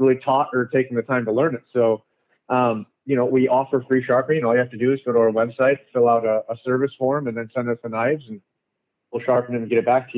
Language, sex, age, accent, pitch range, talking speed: English, male, 30-49, American, 115-130 Hz, 285 wpm